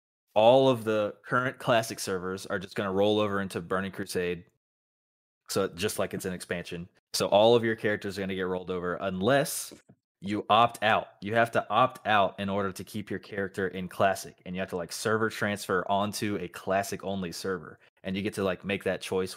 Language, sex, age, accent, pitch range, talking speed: English, male, 20-39, American, 90-110 Hz, 215 wpm